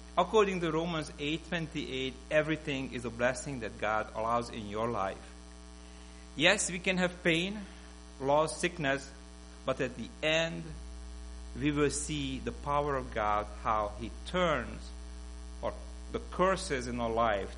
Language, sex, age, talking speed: English, male, 50-69, 140 wpm